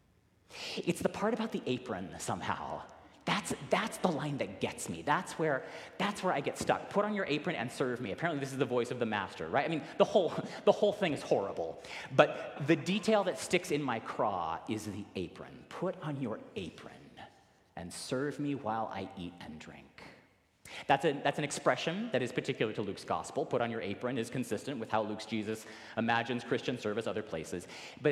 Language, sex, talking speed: English, male, 205 wpm